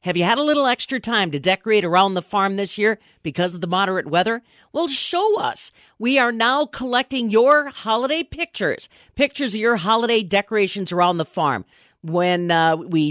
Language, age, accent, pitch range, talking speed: English, 50-69, American, 180-245 Hz, 185 wpm